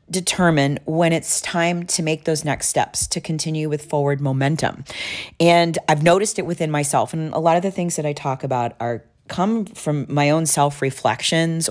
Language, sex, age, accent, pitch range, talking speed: English, female, 40-59, American, 135-170 Hz, 185 wpm